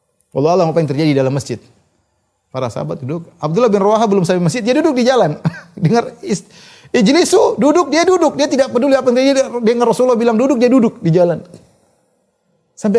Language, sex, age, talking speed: Indonesian, male, 30-49, 190 wpm